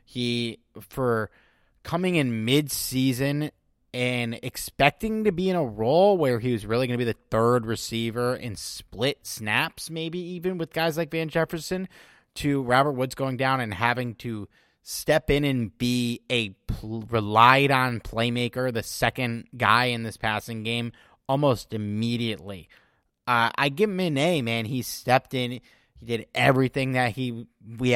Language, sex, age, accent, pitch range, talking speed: English, male, 30-49, American, 115-135 Hz, 155 wpm